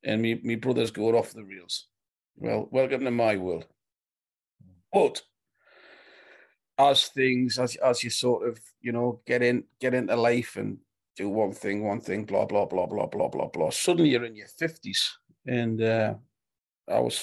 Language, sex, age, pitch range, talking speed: English, male, 50-69, 105-130 Hz, 175 wpm